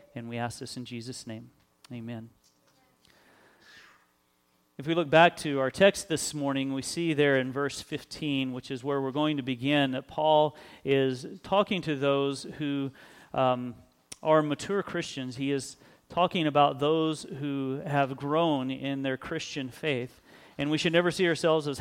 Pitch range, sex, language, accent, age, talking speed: 135-165 Hz, male, English, American, 40-59, 165 wpm